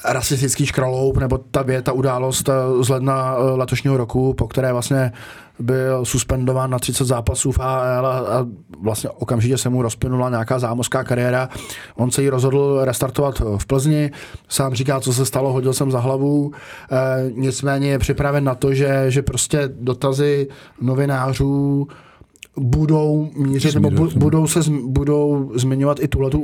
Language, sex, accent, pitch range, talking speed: Czech, male, native, 130-145 Hz, 150 wpm